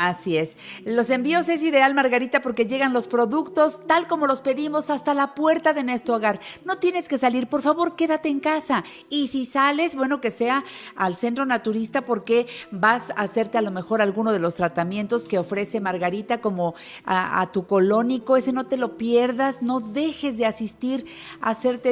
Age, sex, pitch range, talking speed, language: 50-69, female, 200-275 Hz, 190 wpm, Spanish